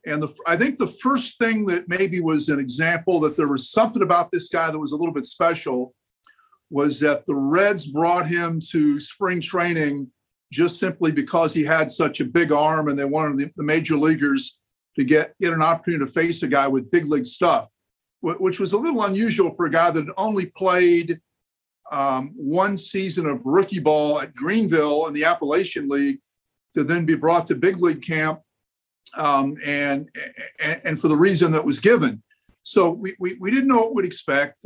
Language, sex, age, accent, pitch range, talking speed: English, male, 50-69, American, 150-190 Hz, 195 wpm